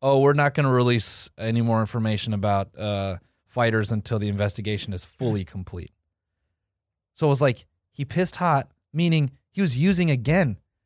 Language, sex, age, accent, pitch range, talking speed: English, male, 20-39, American, 100-125 Hz, 165 wpm